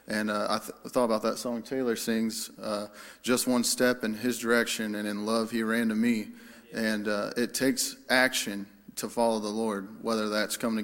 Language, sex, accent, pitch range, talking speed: English, male, American, 100-120 Hz, 205 wpm